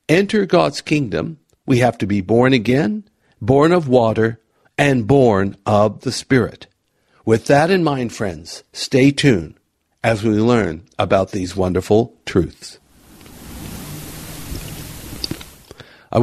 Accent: American